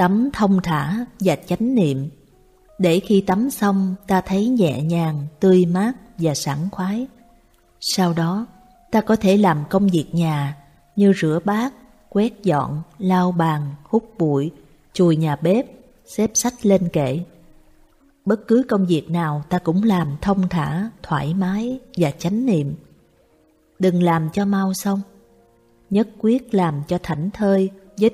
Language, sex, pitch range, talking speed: Vietnamese, female, 160-215 Hz, 150 wpm